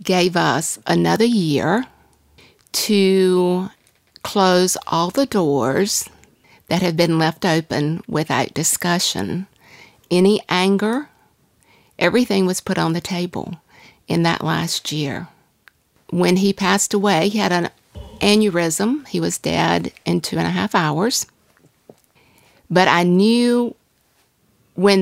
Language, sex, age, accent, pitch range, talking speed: English, female, 50-69, American, 165-195 Hz, 120 wpm